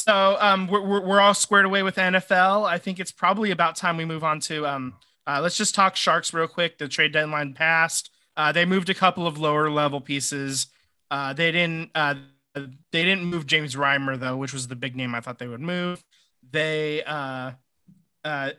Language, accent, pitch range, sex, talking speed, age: English, American, 135-175 Hz, male, 205 wpm, 20-39